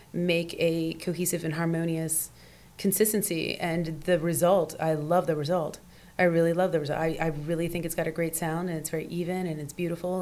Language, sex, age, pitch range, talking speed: English, female, 30-49, 155-180 Hz, 200 wpm